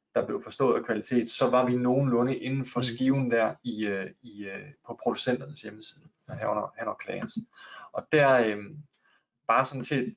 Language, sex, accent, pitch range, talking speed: Danish, male, native, 115-135 Hz, 185 wpm